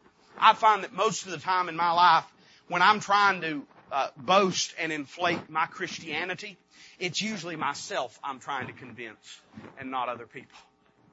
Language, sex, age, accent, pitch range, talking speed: English, male, 30-49, American, 165-225 Hz, 165 wpm